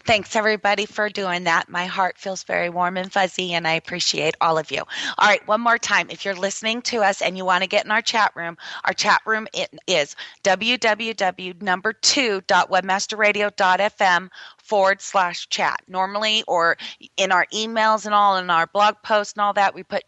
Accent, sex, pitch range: American, female, 180-220 Hz